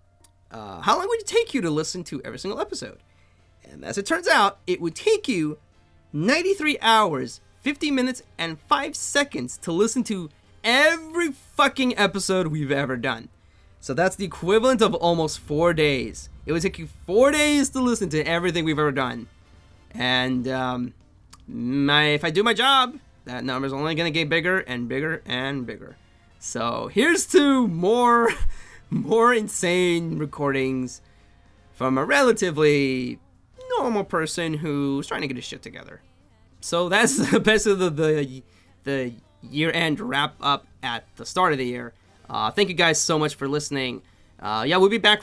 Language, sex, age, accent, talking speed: English, male, 30-49, American, 165 wpm